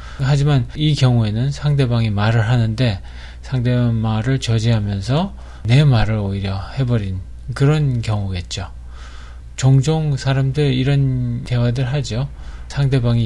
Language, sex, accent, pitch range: Korean, male, native, 95-130 Hz